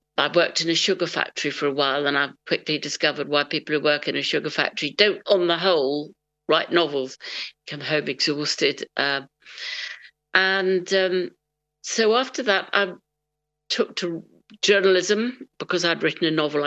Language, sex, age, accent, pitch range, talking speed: English, female, 50-69, British, 150-195 Hz, 160 wpm